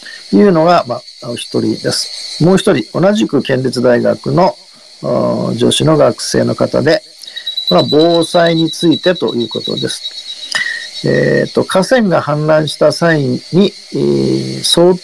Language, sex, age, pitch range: Japanese, male, 50-69, 130-175 Hz